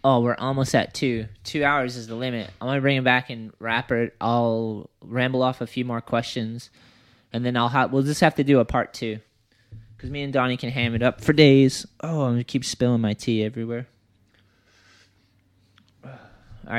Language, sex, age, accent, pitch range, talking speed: English, male, 20-39, American, 105-120 Hz, 205 wpm